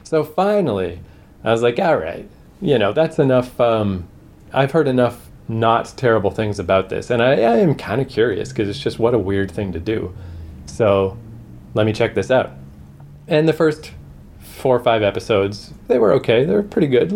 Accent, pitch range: American, 95-115 Hz